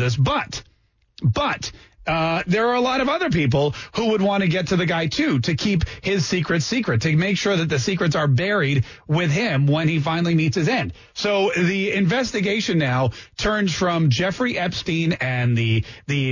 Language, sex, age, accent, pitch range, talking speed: English, male, 30-49, American, 130-185 Hz, 190 wpm